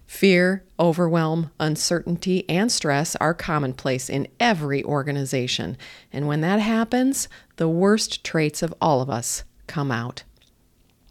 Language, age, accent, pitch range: English, 40-59, American, 145-200 Hz